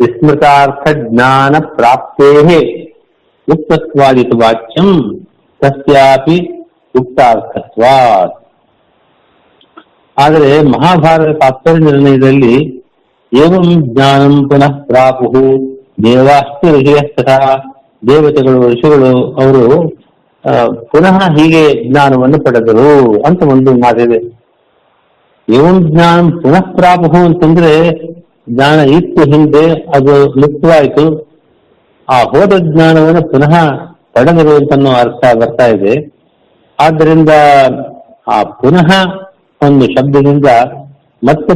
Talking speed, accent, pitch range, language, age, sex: 65 wpm, native, 130-160 Hz, Kannada, 50-69, male